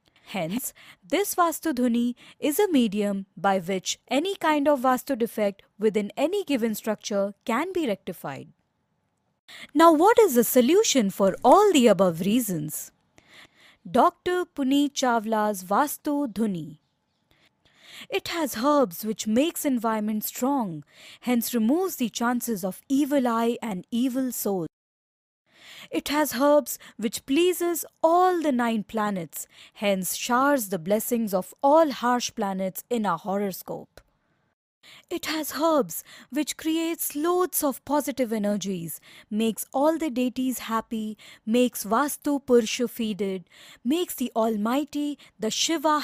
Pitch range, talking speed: 205-290 Hz, 125 wpm